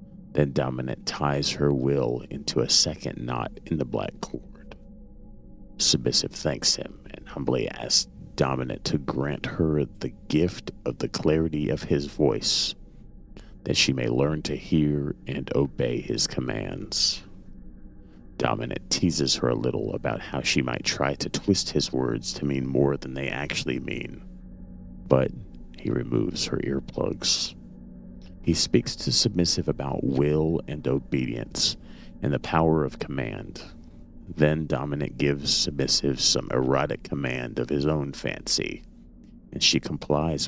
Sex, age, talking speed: male, 30-49, 140 wpm